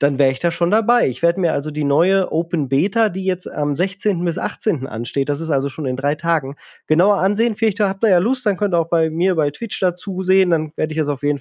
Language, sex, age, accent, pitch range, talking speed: German, male, 30-49, German, 140-180 Hz, 270 wpm